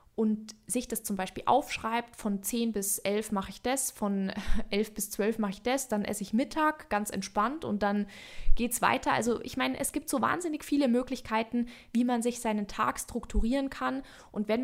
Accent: German